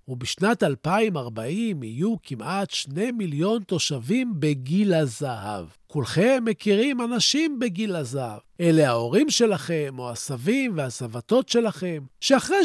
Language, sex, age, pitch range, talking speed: Hebrew, male, 40-59, 150-230 Hz, 105 wpm